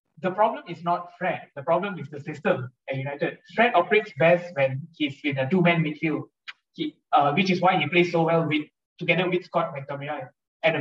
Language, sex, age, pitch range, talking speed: English, male, 20-39, 145-175 Hz, 200 wpm